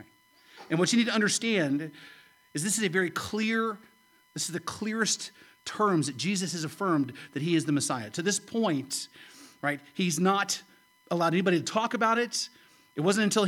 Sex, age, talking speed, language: male, 40-59, 185 wpm, English